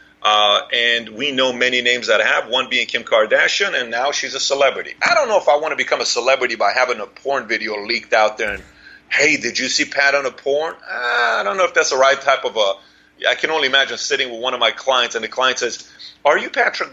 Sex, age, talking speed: male, 30-49, 260 wpm